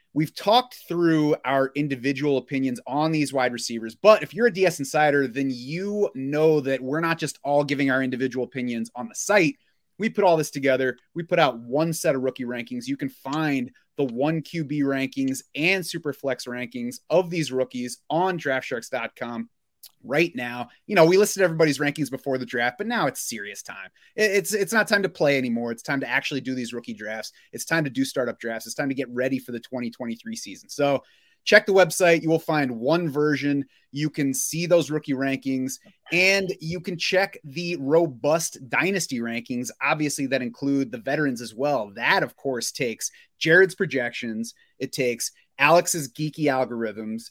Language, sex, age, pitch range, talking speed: English, male, 30-49, 125-165 Hz, 185 wpm